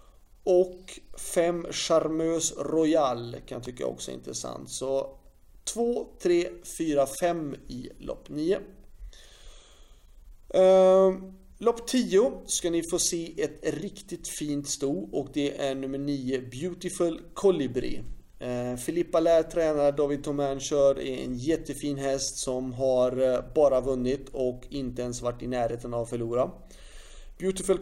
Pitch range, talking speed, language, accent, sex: 125-170 Hz, 130 wpm, Swedish, native, male